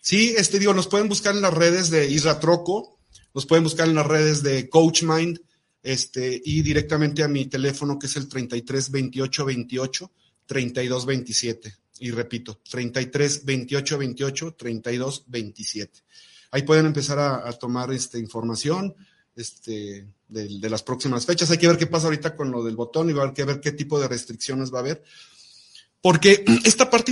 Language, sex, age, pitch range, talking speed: Spanish, male, 40-59, 130-160 Hz, 180 wpm